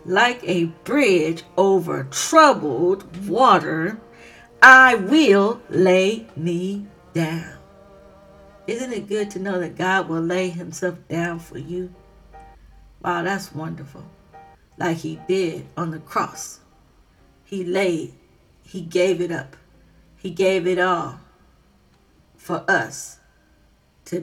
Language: English